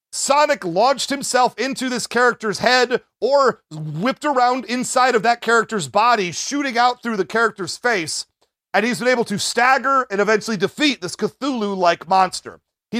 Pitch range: 190-245 Hz